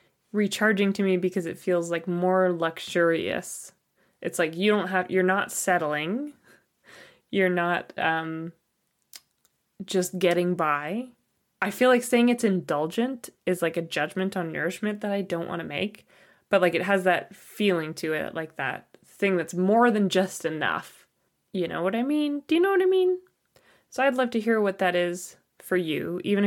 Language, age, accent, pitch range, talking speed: English, 20-39, American, 175-225 Hz, 180 wpm